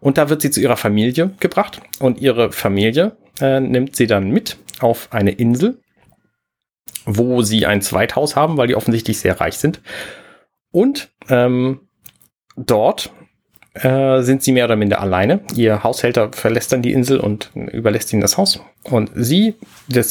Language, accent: German, German